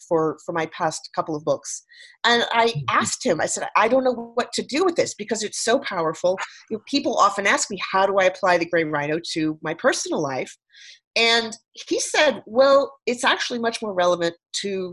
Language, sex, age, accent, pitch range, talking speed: English, female, 40-59, American, 165-225 Hz, 200 wpm